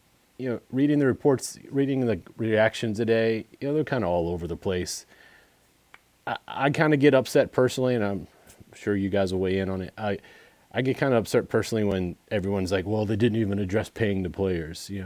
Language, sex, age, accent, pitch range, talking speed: English, male, 30-49, American, 95-115 Hz, 215 wpm